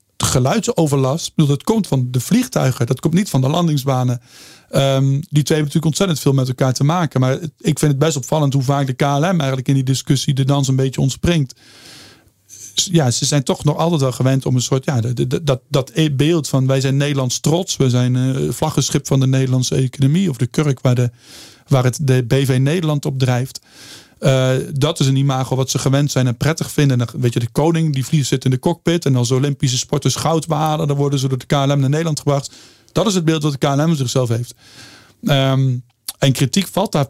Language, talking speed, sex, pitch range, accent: Dutch, 210 wpm, male, 130-155 Hz, Dutch